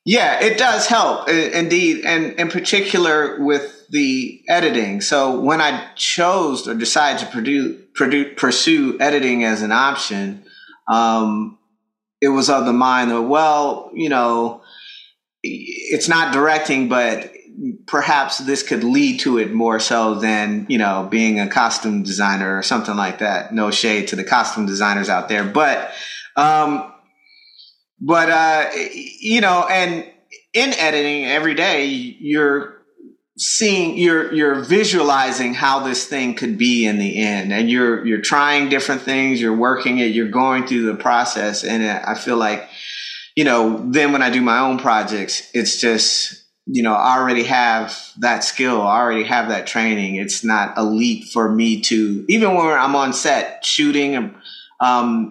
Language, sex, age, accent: English, male, 30-49, American